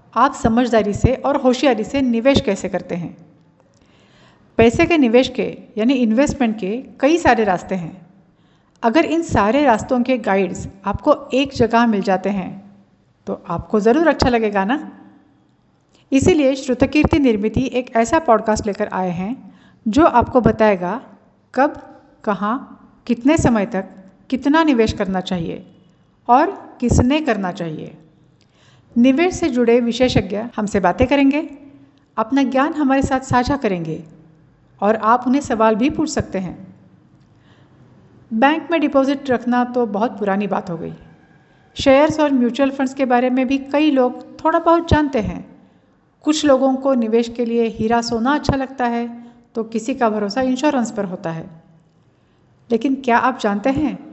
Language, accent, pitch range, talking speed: Hindi, native, 205-270 Hz, 145 wpm